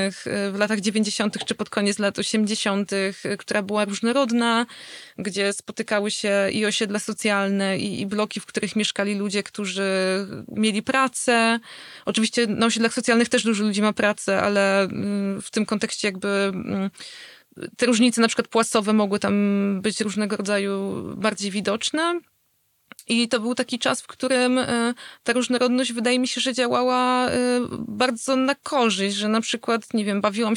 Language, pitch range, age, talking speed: Polish, 210-235 Hz, 20-39, 150 wpm